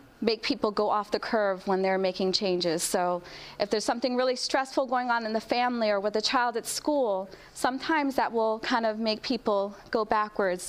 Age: 30-49